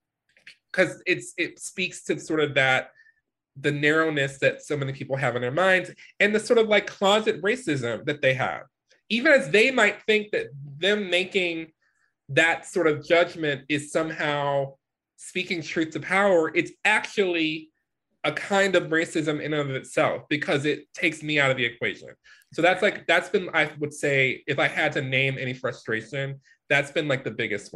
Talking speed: 180 wpm